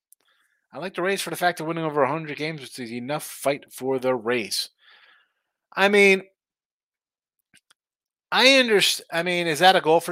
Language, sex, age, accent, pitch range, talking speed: English, male, 30-49, American, 120-155 Hz, 180 wpm